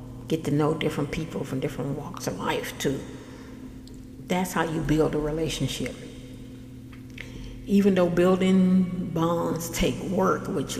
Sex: female